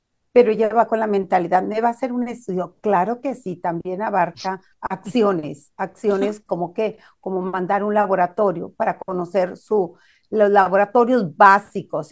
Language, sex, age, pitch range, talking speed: Spanish, female, 50-69, 185-215 Hz, 155 wpm